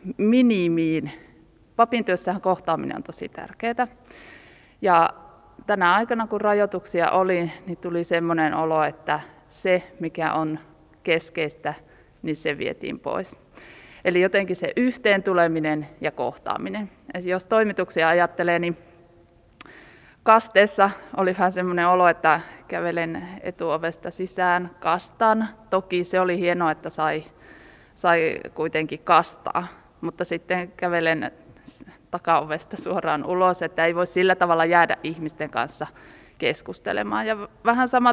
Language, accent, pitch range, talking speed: Finnish, native, 165-195 Hz, 115 wpm